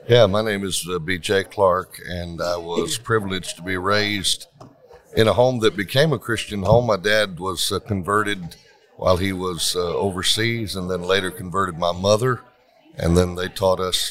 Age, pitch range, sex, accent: 60-79, 90-115 Hz, male, American